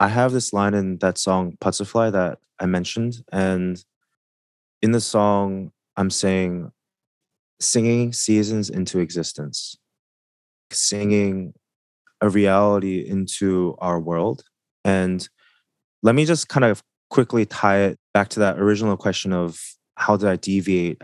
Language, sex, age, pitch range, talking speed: English, male, 20-39, 90-105 Hz, 130 wpm